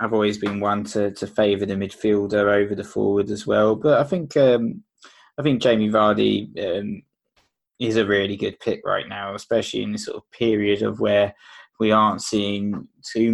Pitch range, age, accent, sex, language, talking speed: 105-120 Hz, 20-39, British, male, English, 190 wpm